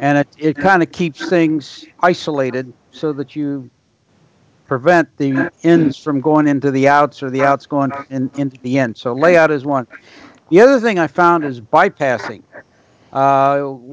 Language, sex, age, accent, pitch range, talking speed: English, male, 60-79, American, 140-165 Hz, 170 wpm